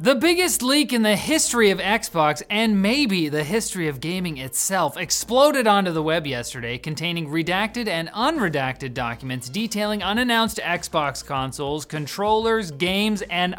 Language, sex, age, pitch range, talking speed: English, male, 30-49, 145-220 Hz, 140 wpm